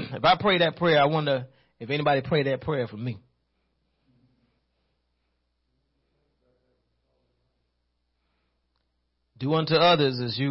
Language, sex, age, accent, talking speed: English, male, 40-59, American, 110 wpm